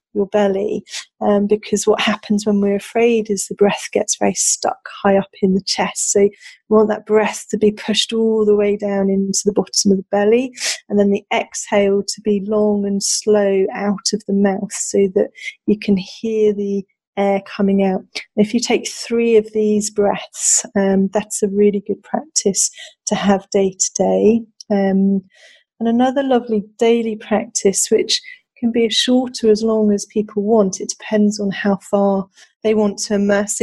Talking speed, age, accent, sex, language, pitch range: 185 wpm, 40-59, British, female, English, 200-215 Hz